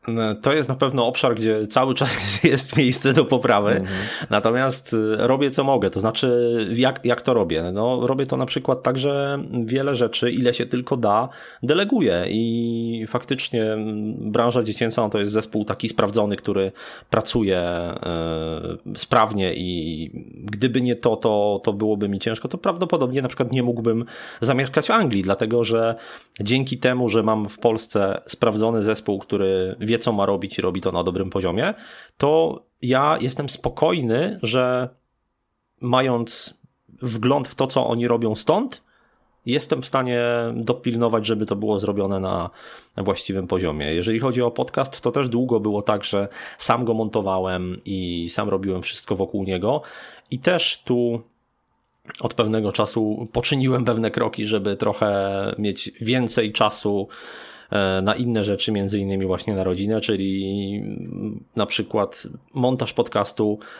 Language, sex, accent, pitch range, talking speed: Polish, male, native, 100-125 Hz, 150 wpm